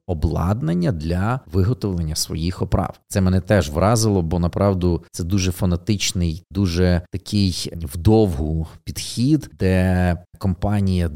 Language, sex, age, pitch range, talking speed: Ukrainian, male, 30-49, 85-100 Hz, 110 wpm